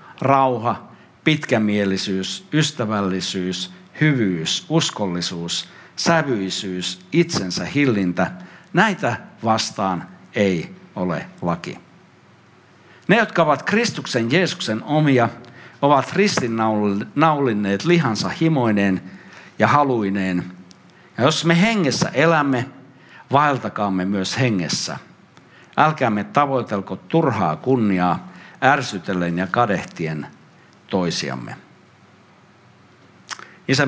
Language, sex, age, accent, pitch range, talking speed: Finnish, male, 60-79, native, 100-145 Hz, 75 wpm